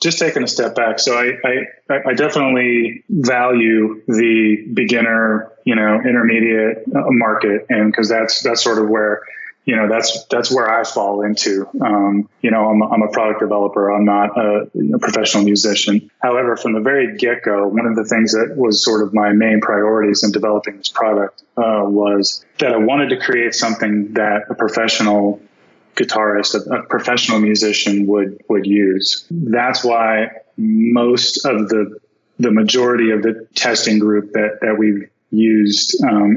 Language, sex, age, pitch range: English, male, 20-39, 105-115 Hz